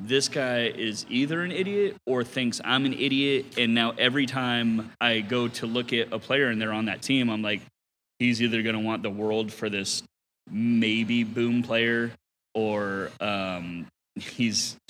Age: 30-49